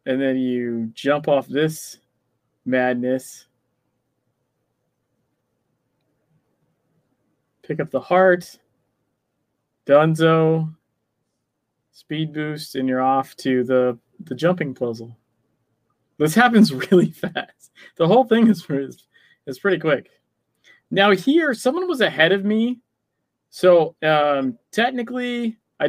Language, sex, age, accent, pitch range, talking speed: English, male, 20-39, American, 125-160 Hz, 100 wpm